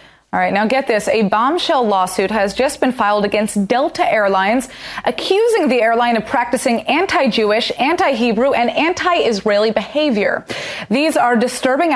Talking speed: 140 wpm